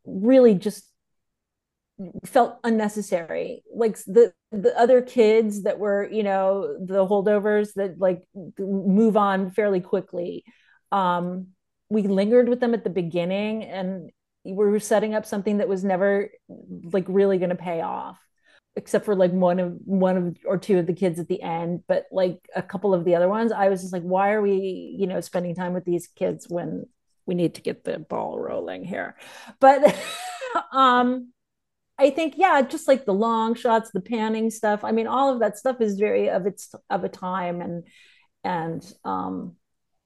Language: English